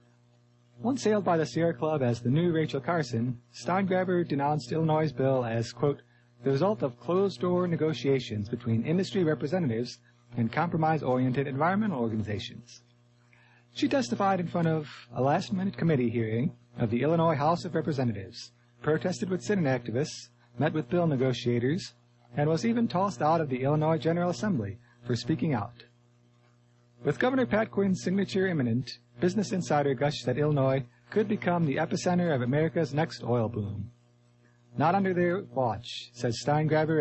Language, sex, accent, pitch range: English, male, American, 120-170 Hz